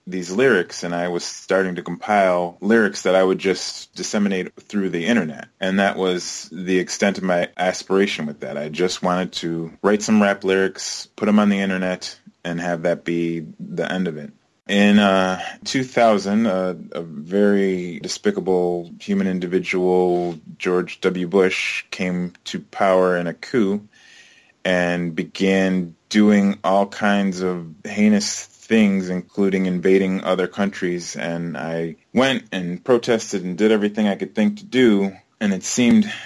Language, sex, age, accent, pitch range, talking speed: English, male, 20-39, American, 90-105 Hz, 155 wpm